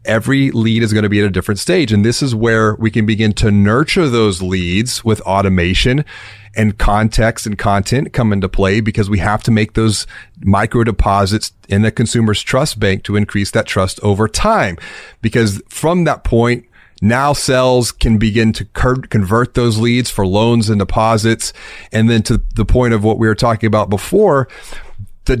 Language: English